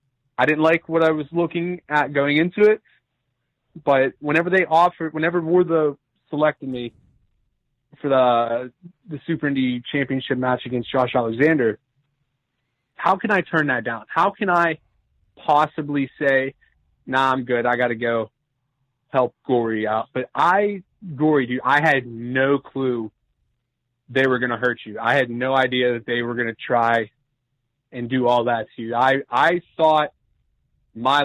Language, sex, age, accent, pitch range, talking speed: English, male, 30-49, American, 120-145 Hz, 165 wpm